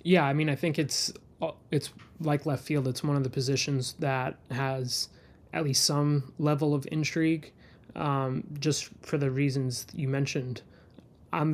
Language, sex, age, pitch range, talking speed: English, male, 20-39, 130-150 Hz, 160 wpm